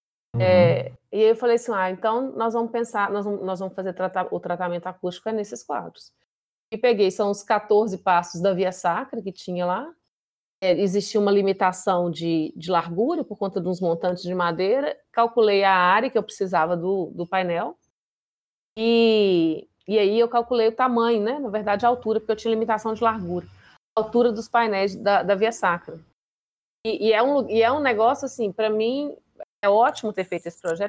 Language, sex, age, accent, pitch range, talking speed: Portuguese, female, 30-49, Brazilian, 185-230 Hz, 190 wpm